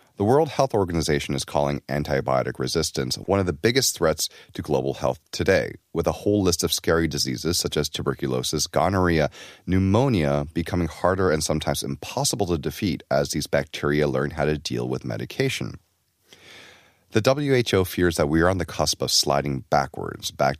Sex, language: male, Korean